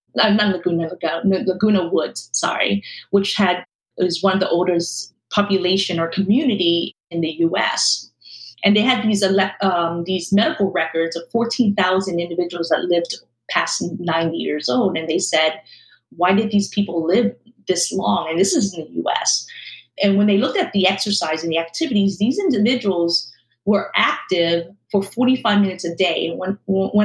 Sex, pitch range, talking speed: female, 170-210 Hz, 165 wpm